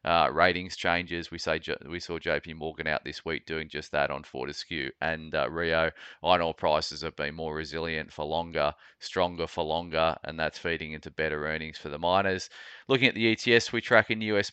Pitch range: 85-100 Hz